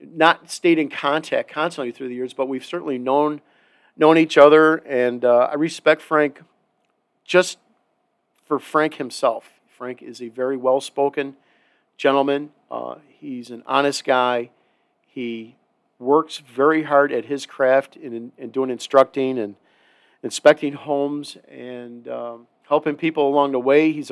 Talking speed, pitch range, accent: 145 wpm, 125-155 Hz, American